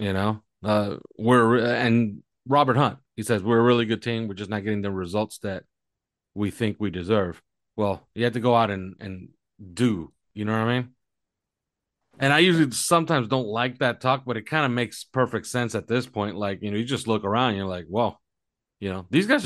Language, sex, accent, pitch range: English, male, American, 95-120 Hz